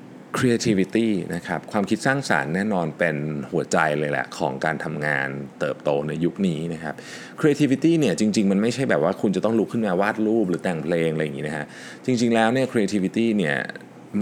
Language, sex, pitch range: Thai, male, 80-115 Hz